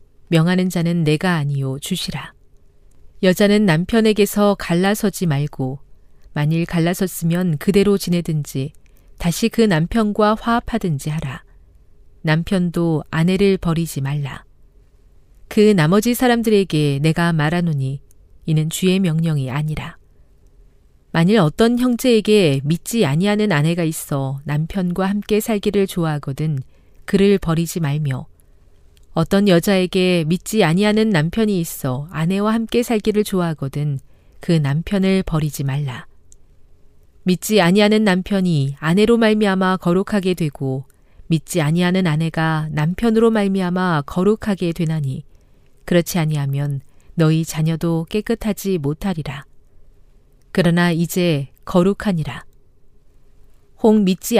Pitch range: 145-195 Hz